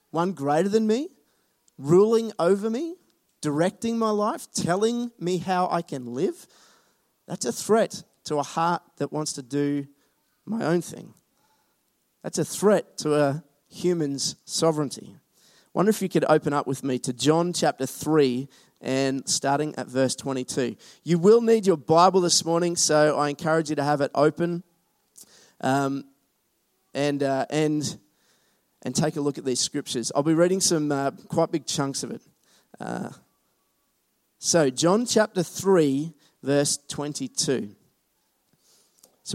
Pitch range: 135-185 Hz